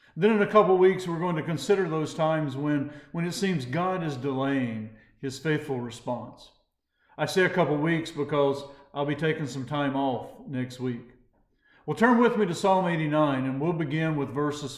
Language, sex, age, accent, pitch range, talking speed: English, male, 50-69, American, 130-170 Hz, 195 wpm